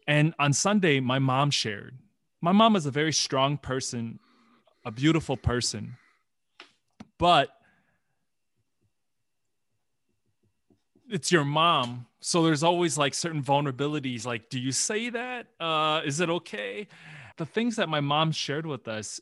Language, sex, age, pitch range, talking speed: English, male, 20-39, 130-175 Hz, 135 wpm